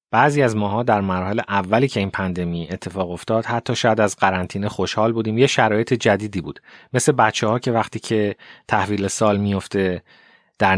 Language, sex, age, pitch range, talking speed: Persian, male, 30-49, 95-120 Hz, 175 wpm